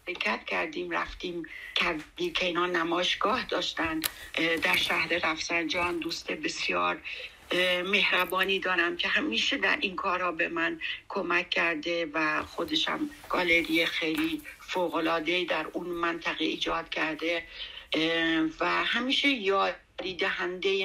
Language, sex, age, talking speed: Persian, female, 60-79, 105 wpm